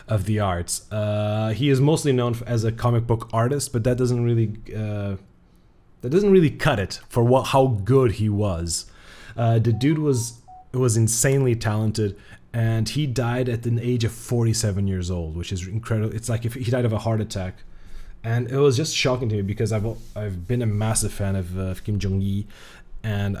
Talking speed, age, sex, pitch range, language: 205 wpm, 20-39, male, 105-125 Hz, English